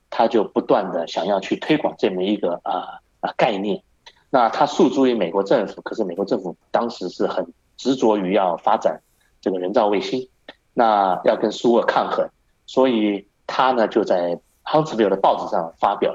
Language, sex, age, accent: Chinese, male, 30-49, native